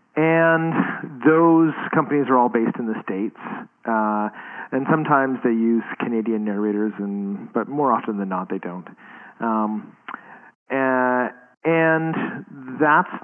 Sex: male